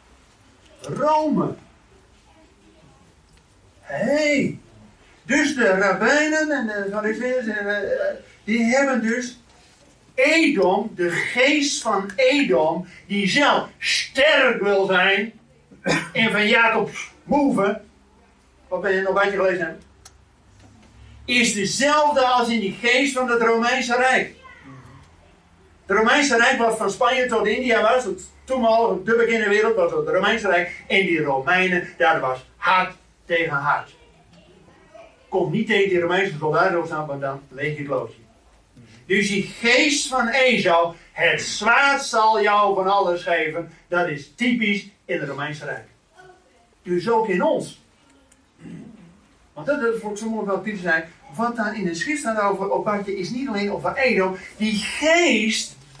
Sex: male